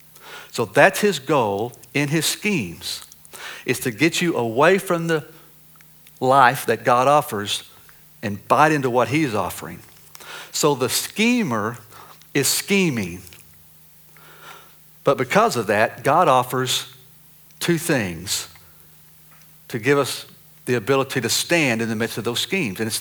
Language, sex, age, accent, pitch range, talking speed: English, male, 60-79, American, 120-160 Hz, 135 wpm